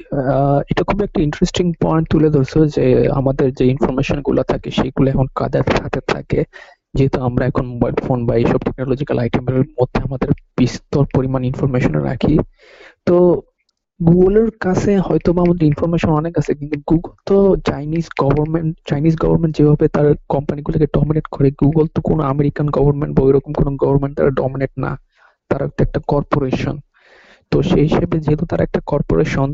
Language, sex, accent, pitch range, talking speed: English, male, Indian, 140-160 Hz, 110 wpm